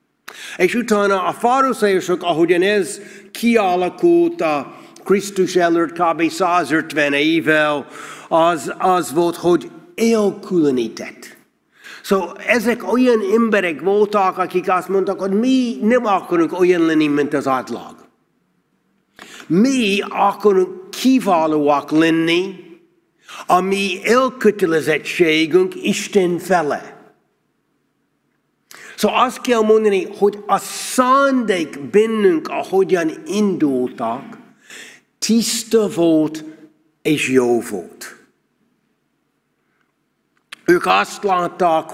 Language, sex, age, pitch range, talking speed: Hungarian, male, 60-79, 160-210 Hz, 90 wpm